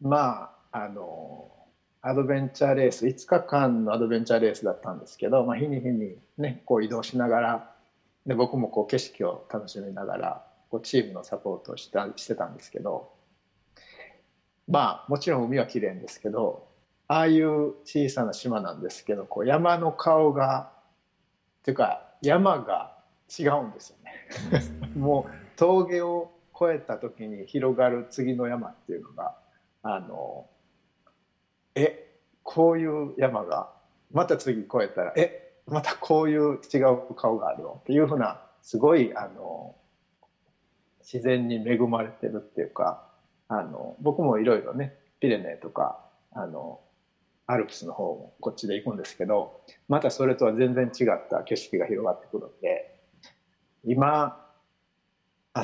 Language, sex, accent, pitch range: Japanese, male, native, 120-155 Hz